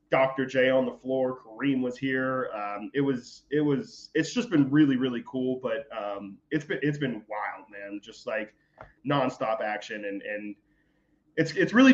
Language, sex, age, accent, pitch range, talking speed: English, male, 20-39, American, 115-150 Hz, 185 wpm